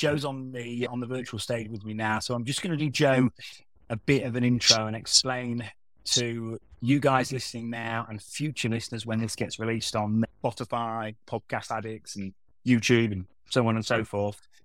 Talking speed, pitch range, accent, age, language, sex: 195 wpm, 110-130 Hz, British, 30-49, English, male